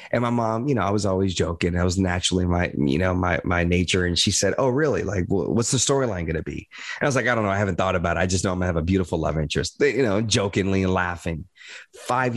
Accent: American